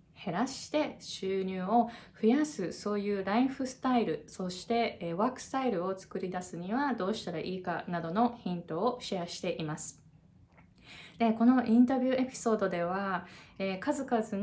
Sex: female